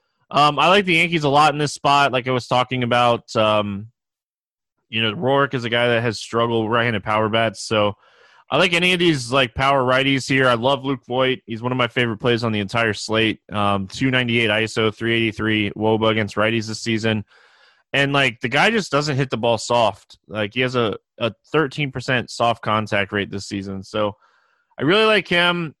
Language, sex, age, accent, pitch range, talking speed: English, male, 20-39, American, 110-140 Hz, 205 wpm